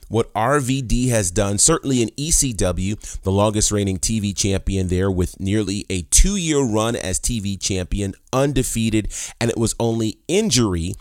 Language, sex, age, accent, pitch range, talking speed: English, male, 30-49, American, 90-120 Hz, 145 wpm